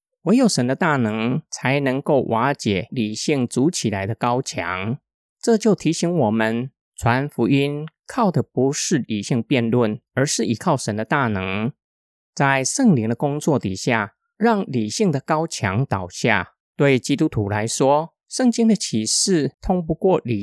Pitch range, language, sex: 115-155 Hz, Chinese, male